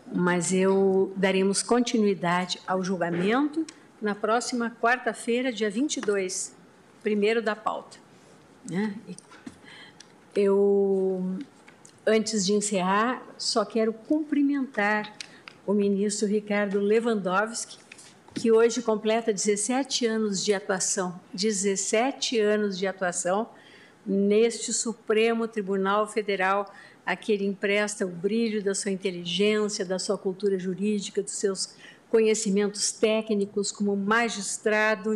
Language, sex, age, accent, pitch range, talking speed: Portuguese, female, 50-69, Brazilian, 200-230 Hz, 100 wpm